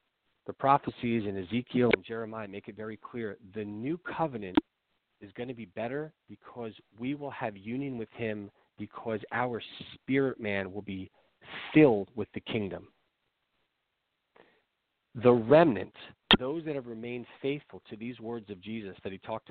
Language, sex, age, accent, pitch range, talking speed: English, male, 40-59, American, 105-135 Hz, 155 wpm